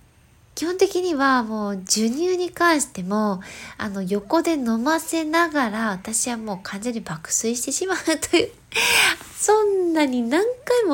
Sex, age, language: female, 20-39, Japanese